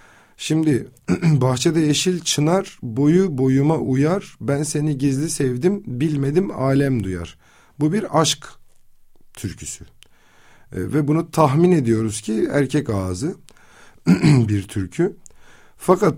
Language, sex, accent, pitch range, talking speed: Turkish, male, native, 110-155 Hz, 110 wpm